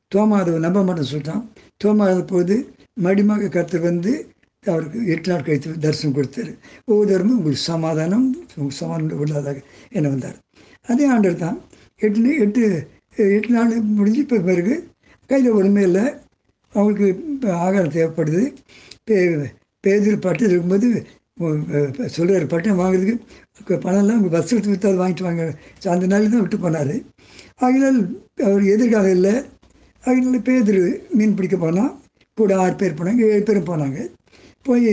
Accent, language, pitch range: native, Tamil, 165-210 Hz